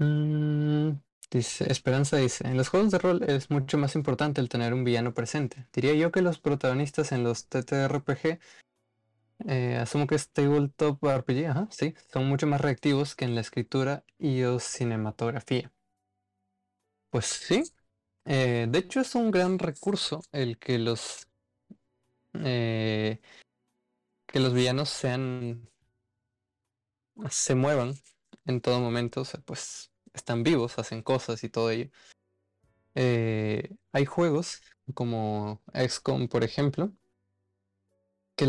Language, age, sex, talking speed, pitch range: Spanish, 20-39, male, 130 wpm, 110-145 Hz